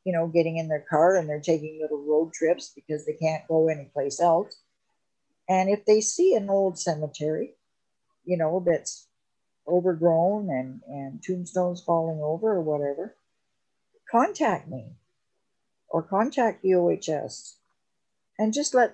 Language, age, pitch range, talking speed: English, 50-69, 160-200 Hz, 145 wpm